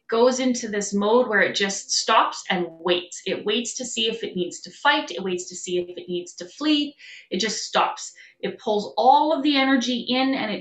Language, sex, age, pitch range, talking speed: English, female, 20-39, 185-245 Hz, 225 wpm